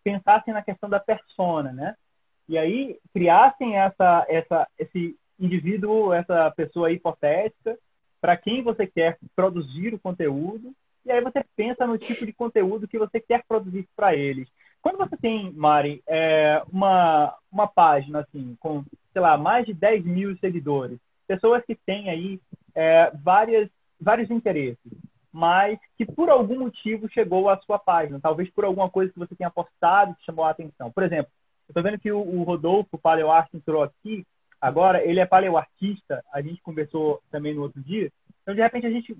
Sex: male